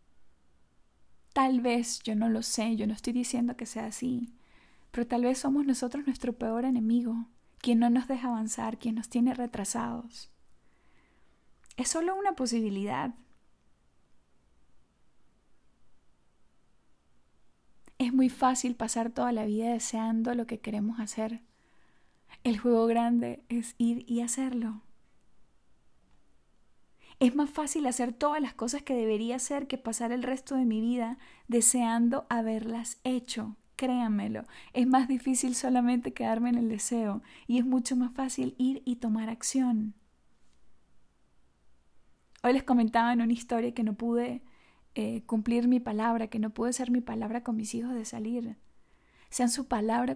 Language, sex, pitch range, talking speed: Spanish, female, 225-250 Hz, 140 wpm